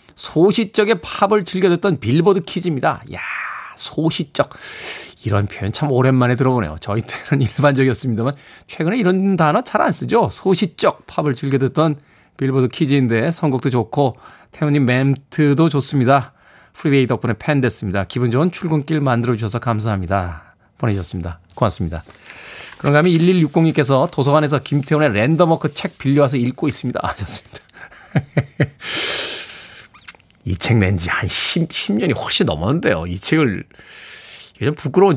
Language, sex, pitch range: Korean, male, 120-165 Hz